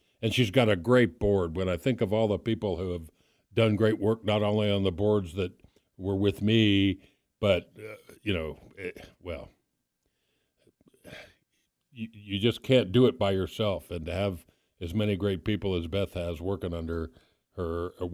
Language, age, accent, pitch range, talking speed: English, 60-79, American, 95-130 Hz, 180 wpm